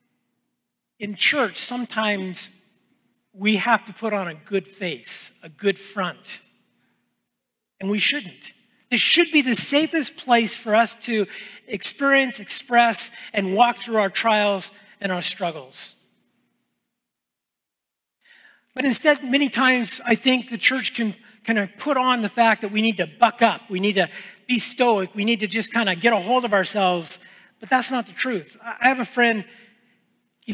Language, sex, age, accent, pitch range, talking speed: English, male, 40-59, American, 195-240 Hz, 165 wpm